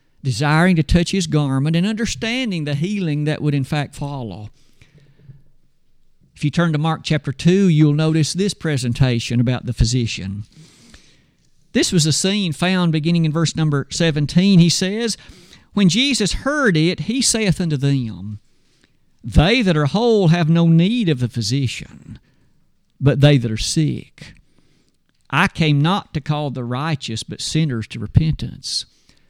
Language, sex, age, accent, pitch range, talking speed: English, male, 50-69, American, 140-190 Hz, 150 wpm